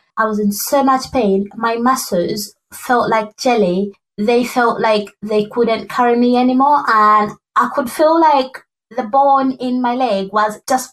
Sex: female